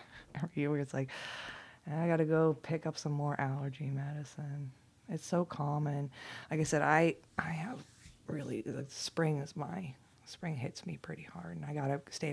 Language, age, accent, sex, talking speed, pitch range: English, 20-39, American, female, 170 wpm, 140-160 Hz